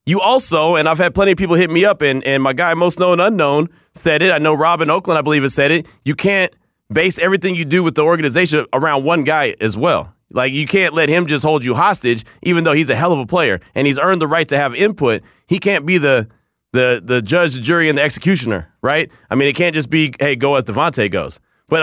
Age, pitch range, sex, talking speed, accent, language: 30-49, 135-180 Hz, male, 255 wpm, American, English